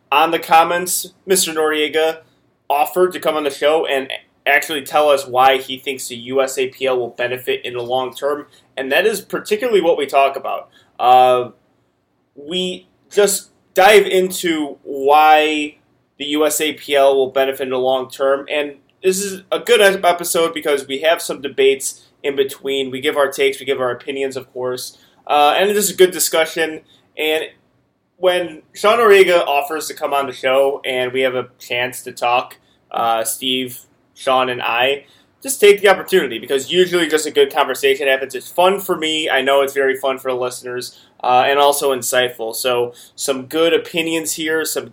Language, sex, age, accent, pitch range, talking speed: English, male, 20-39, American, 130-175 Hz, 180 wpm